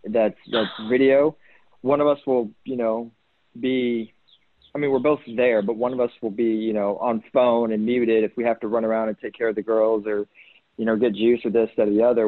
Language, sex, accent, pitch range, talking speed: English, male, American, 105-120 Hz, 245 wpm